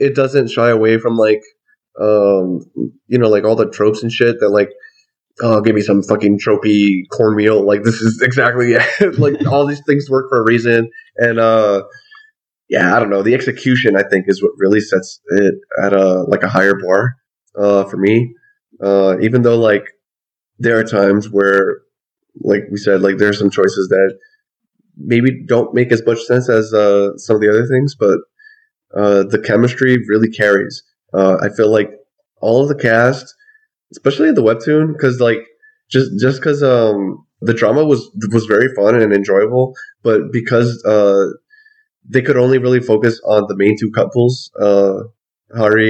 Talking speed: 180 wpm